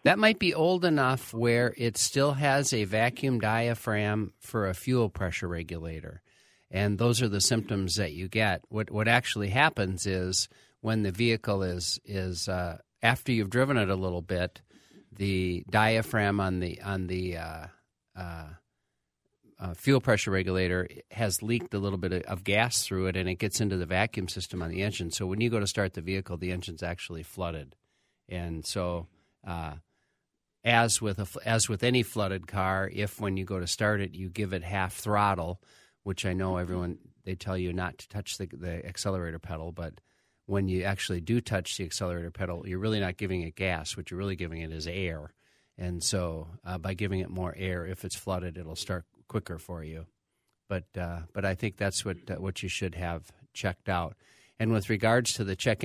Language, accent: English, American